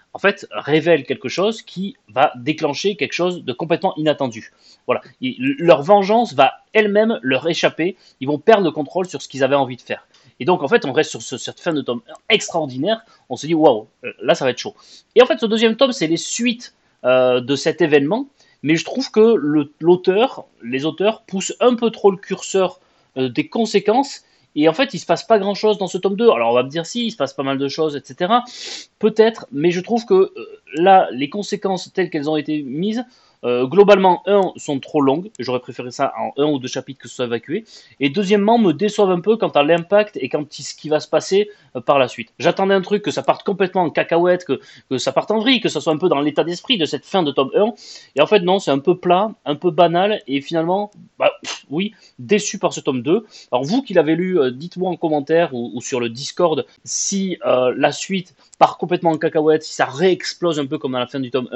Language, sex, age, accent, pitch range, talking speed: French, male, 30-49, French, 140-205 Hz, 235 wpm